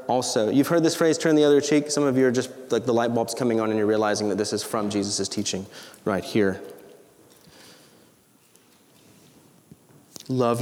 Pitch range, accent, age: 115-150 Hz, American, 30-49